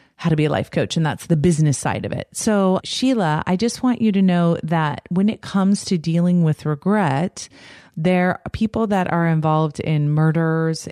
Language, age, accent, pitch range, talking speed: English, 30-49, American, 145-175 Hz, 205 wpm